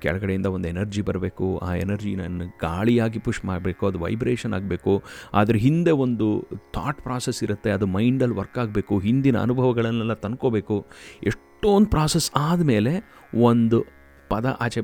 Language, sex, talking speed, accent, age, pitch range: Kannada, male, 125 wpm, native, 30-49, 95-130 Hz